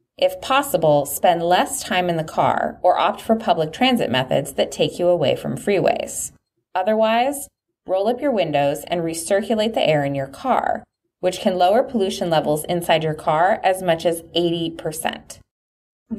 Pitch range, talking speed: 155-225 Hz, 165 wpm